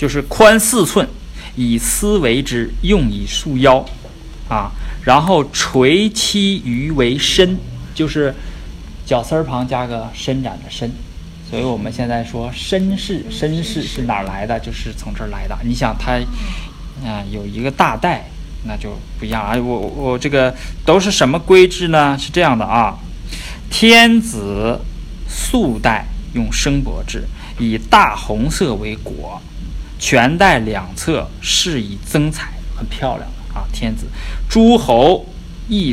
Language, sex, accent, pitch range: Chinese, male, native, 105-160 Hz